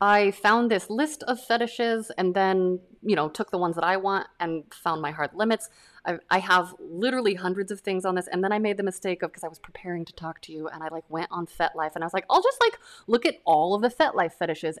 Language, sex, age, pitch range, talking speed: English, female, 20-39, 160-215 Hz, 265 wpm